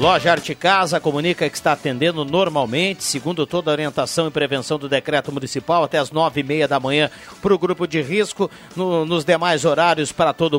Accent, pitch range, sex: Brazilian, 150-185 Hz, male